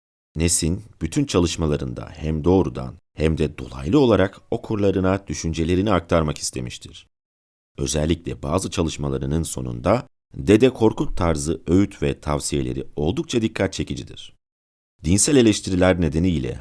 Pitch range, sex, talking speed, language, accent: 75-100 Hz, male, 105 wpm, Turkish, native